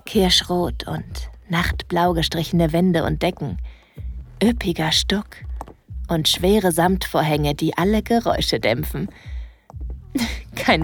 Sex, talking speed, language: female, 95 wpm, German